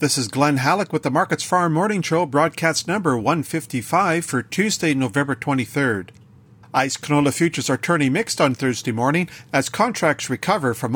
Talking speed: 165 wpm